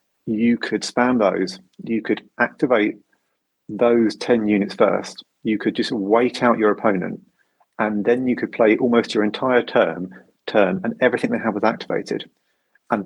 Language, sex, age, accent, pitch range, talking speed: English, male, 30-49, British, 100-120 Hz, 160 wpm